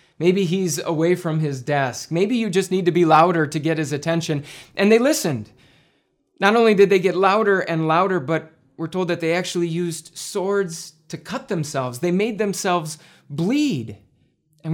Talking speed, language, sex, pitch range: 180 wpm, English, male, 135-180 Hz